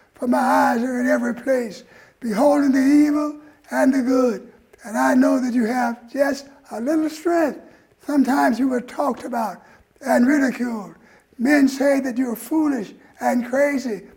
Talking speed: 155 wpm